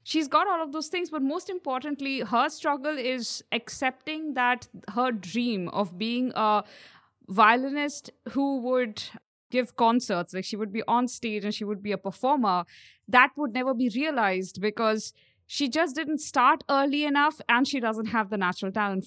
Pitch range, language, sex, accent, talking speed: 230-300 Hz, English, female, Indian, 175 wpm